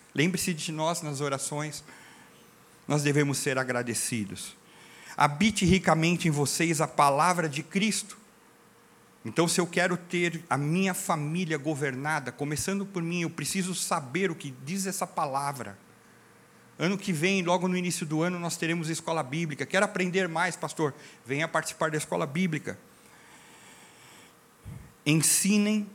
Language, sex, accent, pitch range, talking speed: Portuguese, male, Brazilian, 140-180 Hz, 135 wpm